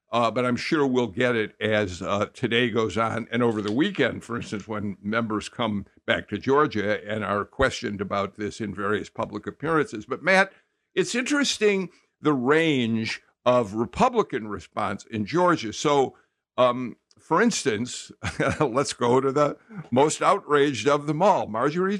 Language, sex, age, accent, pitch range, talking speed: English, male, 60-79, American, 110-150 Hz, 160 wpm